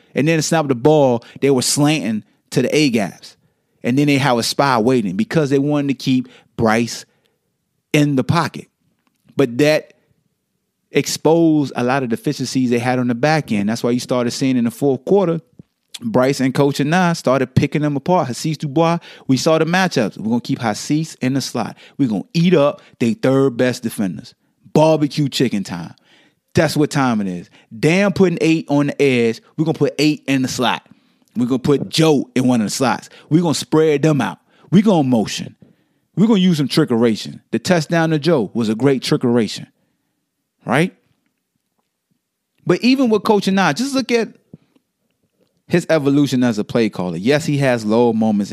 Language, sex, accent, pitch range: English, male, American, 125-160 Hz